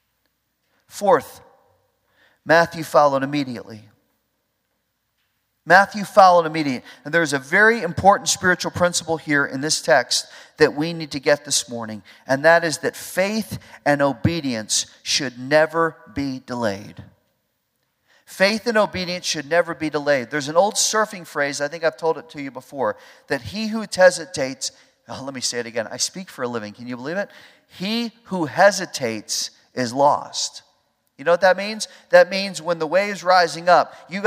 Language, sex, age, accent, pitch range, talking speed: English, male, 40-59, American, 135-185 Hz, 165 wpm